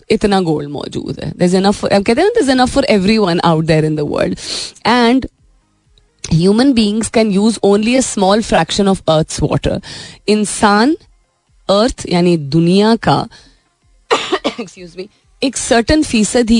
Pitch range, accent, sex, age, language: 160-220 Hz, native, female, 30-49, Hindi